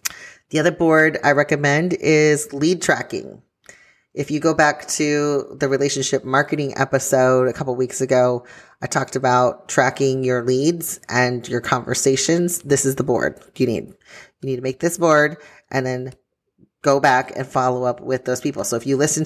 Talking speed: 175 wpm